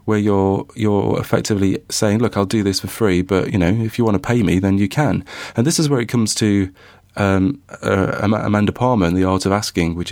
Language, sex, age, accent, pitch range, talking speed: English, male, 30-49, British, 90-105 Hz, 235 wpm